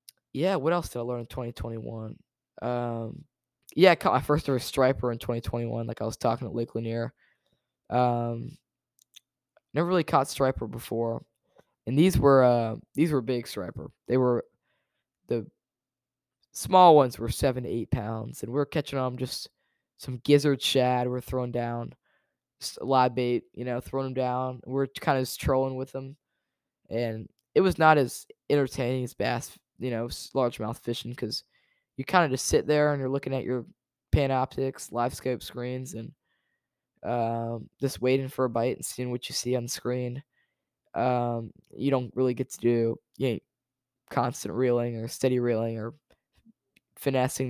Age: 10-29